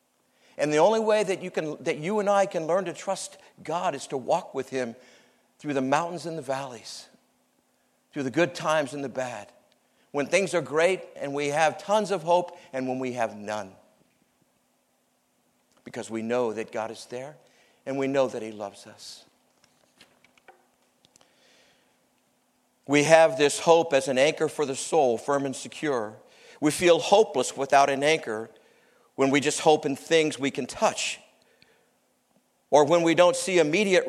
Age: 50-69